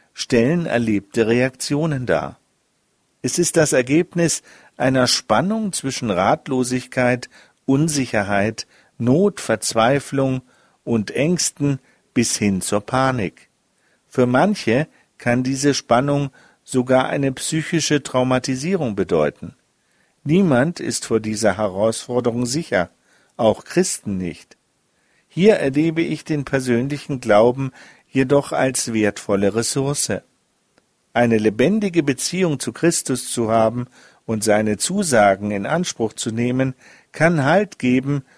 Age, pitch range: 50-69, 115-150 Hz